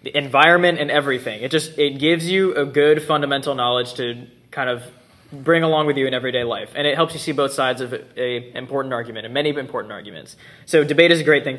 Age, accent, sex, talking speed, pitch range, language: 20-39, American, male, 230 wpm, 130-150 Hz, English